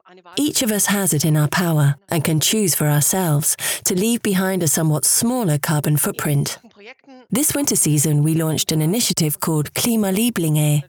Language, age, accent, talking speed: English, 30-49, British, 170 wpm